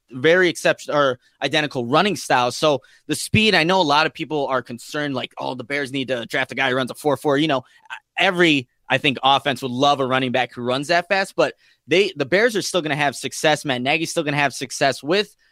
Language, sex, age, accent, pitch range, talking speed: English, male, 20-39, American, 130-160 Hz, 250 wpm